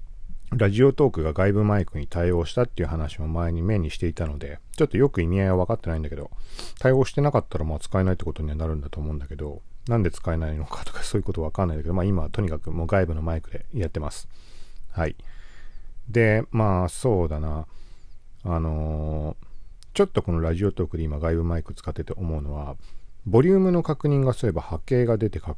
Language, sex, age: Japanese, male, 40-59